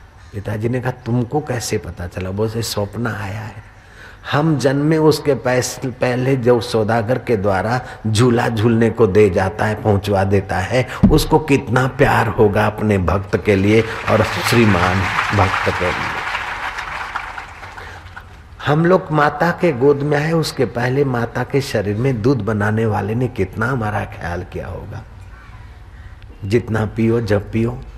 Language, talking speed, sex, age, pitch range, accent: Hindi, 145 wpm, male, 50-69, 105-125 Hz, native